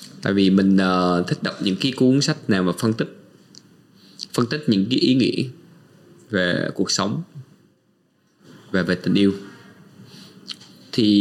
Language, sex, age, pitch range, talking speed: Vietnamese, male, 20-39, 90-120 Hz, 150 wpm